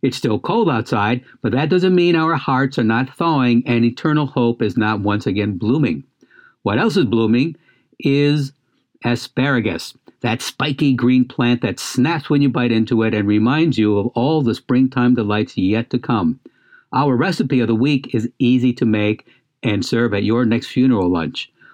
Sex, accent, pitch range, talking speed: male, American, 115-140 Hz, 180 wpm